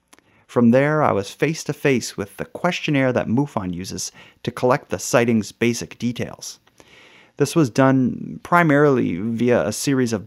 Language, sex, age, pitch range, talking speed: English, male, 30-49, 105-130 Hz, 145 wpm